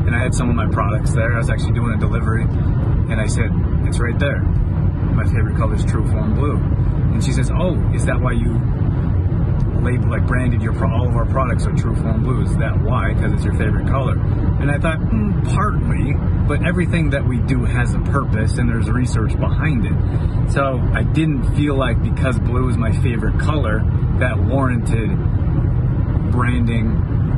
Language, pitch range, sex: English, 105-125 Hz, male